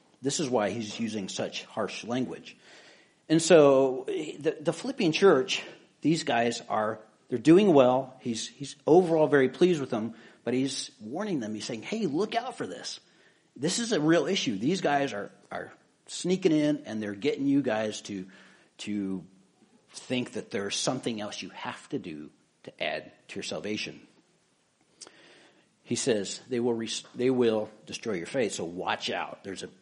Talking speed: 170 wpm